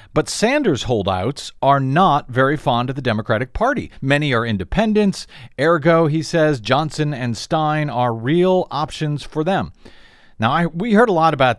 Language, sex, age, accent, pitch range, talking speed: English, male, 40-59, American, 125-165 Hz, 160 wpm